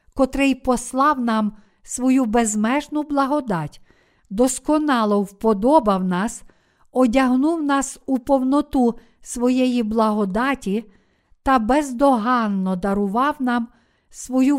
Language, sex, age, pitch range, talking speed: Ukrainian, female, 50-69, 225-275 Hz, 80 wpm